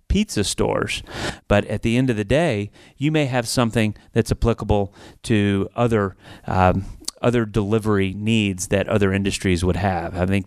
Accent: American